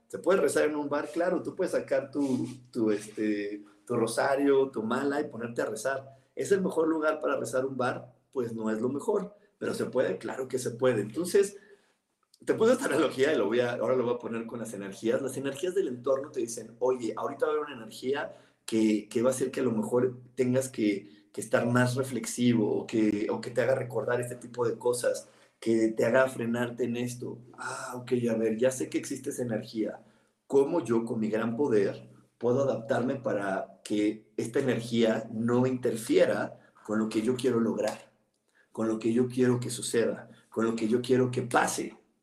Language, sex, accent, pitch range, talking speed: Spanish, male, Mexican, 115-150 Hz, 210 wpm